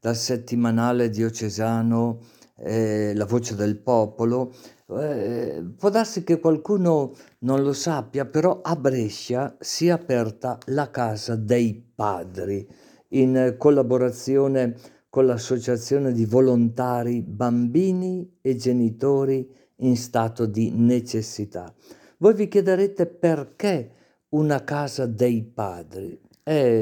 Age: 50-69